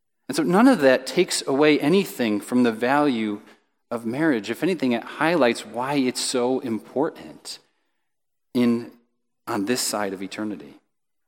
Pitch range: 115-150 Hz